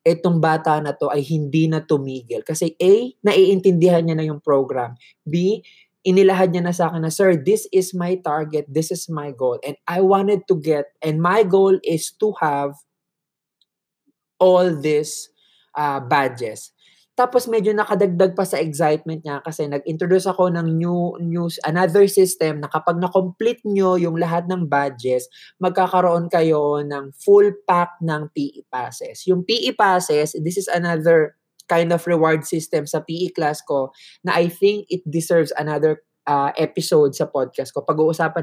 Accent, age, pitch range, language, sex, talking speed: Filipino, 20-39, 155-190 Hz, English, male, 160 wpm